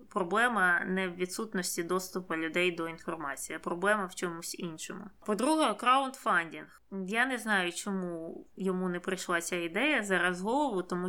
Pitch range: 180-220 Hz